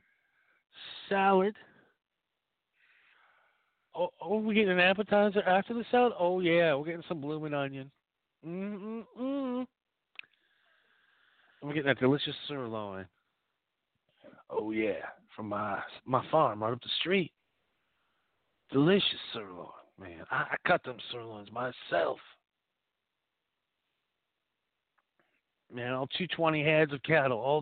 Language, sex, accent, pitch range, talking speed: English, male, American, 135-200 Hz, 110 wpm